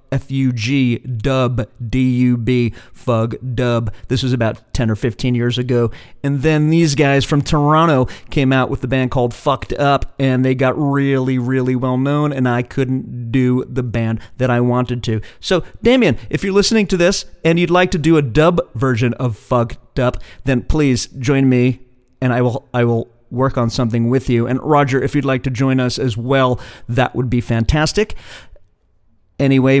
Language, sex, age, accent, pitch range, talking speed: English, male, 40-59, American, 120-150 Hz, 190 wpm